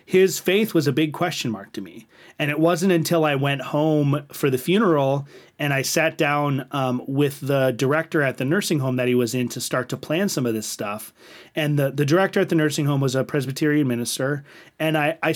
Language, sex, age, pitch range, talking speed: English, male, 30-49, 130-165 Hz, 225 wpm